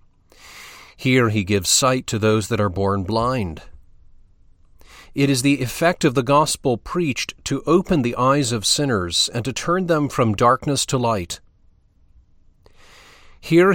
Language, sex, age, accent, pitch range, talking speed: English, male, 40-59, American, 90-145 Hz, 145 wpm